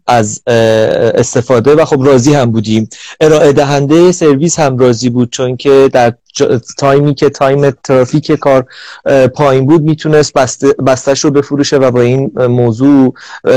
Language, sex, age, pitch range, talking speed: Persian, male, 30-49, 125-150 Hz, 135 wpm